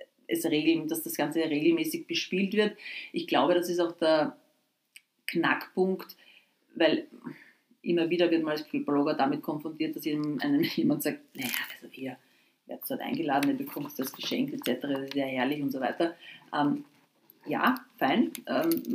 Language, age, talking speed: German, 30-49, 160 wpm